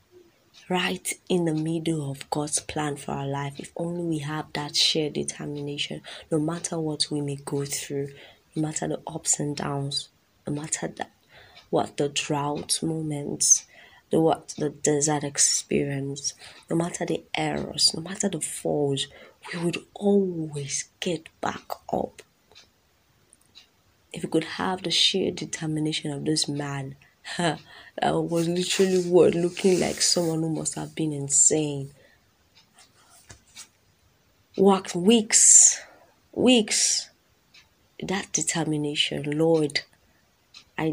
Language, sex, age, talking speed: English, female, 20-39, 125 wpm